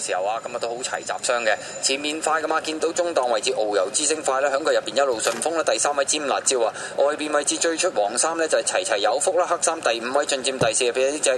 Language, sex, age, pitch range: Chinese, male, 20-39, 160-210 Hz